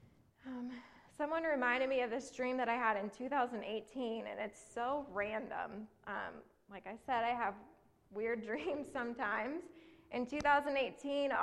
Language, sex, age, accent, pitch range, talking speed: English, female, 20-39, American, 220-255 Hz, 140 wpm